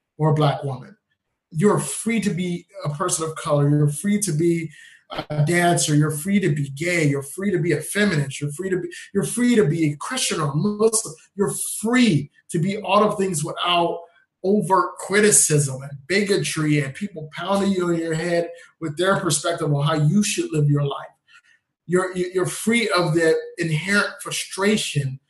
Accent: American